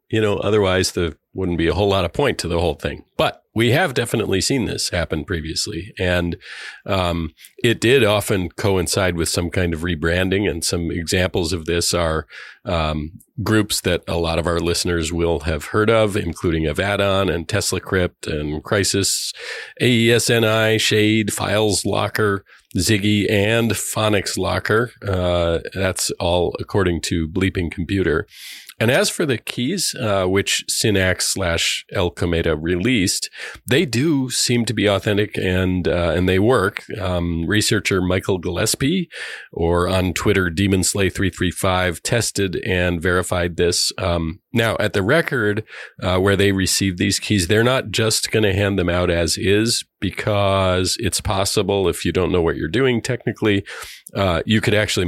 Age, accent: 40-59, American